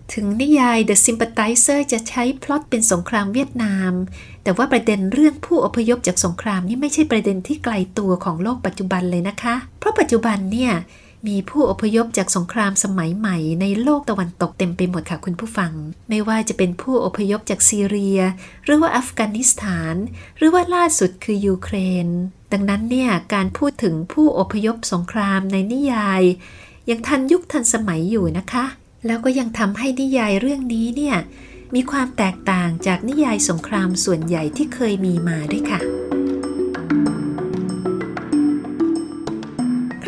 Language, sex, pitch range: Thai, female, 185-245 Hz